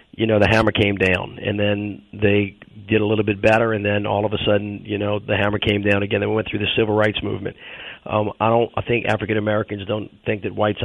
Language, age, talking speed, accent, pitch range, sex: English, 40-59, 250 wpm, American, 100-110 Hz, male